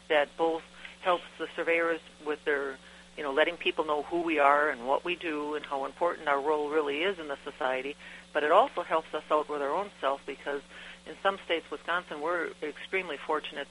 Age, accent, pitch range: 60-79, American, 145-165 Hz